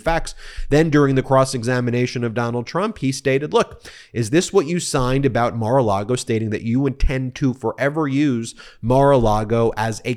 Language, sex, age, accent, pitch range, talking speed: English, male, 30-49, American, 115-150 Hz, 165 wpm